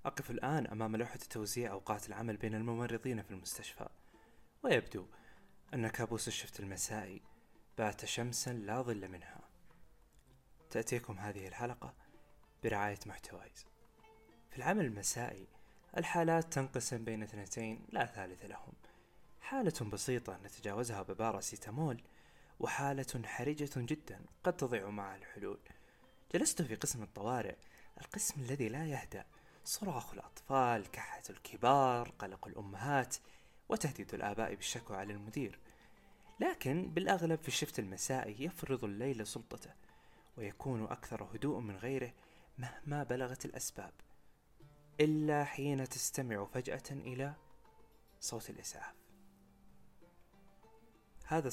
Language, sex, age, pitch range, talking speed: Arabic, male, 20-39, 110-140 Hz, 105 wpm